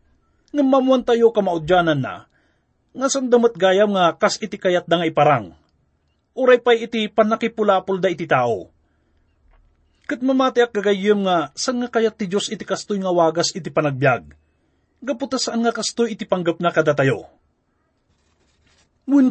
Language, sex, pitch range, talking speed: English, male, 150-230 Hz, 130 wpm